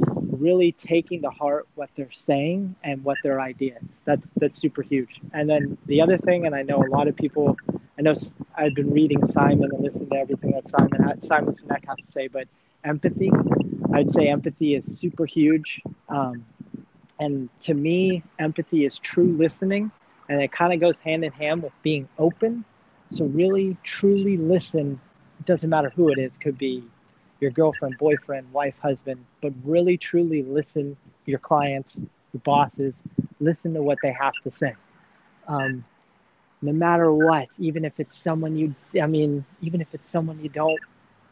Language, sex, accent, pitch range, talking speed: English, male, American, 140-165 Hz, 175 wpm